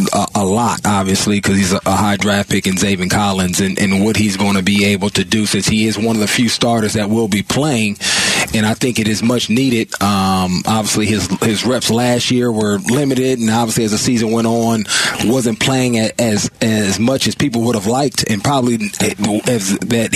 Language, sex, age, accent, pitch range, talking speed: English, male, 30-49, American, 115-155 Hz, 220 wpm